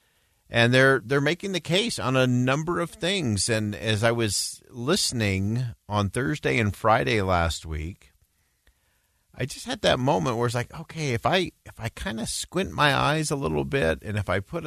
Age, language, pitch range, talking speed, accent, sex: 50-69, English, 95-140 Hz, 190 wpm, American, male